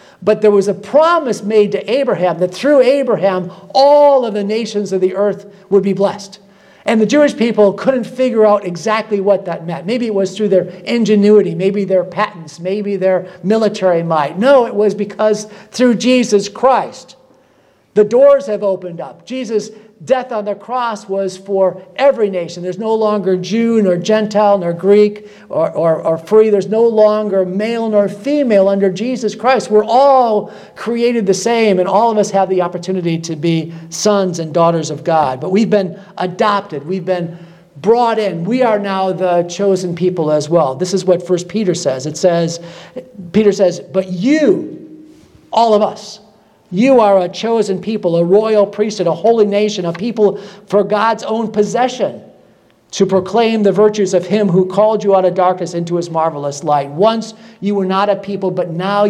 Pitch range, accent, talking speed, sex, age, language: 180-215 Hz, American, 180 wpm, male, 50-69, English